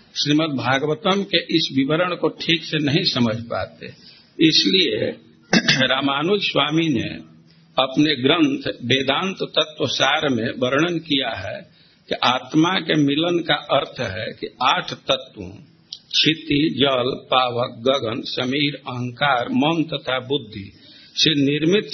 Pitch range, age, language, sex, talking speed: 130-165 Hz, 60-79, Hindi, male, 120 wpm